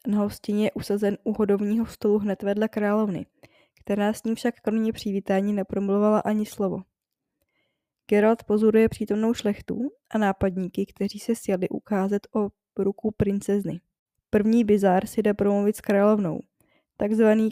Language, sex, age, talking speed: Czech, female, 10-29, 135 wpm